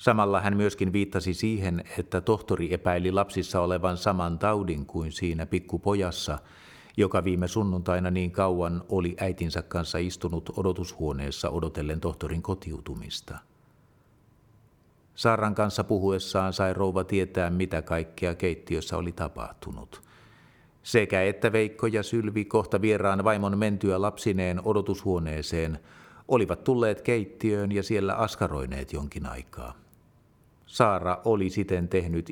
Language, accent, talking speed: Finnish, native, 115 wpm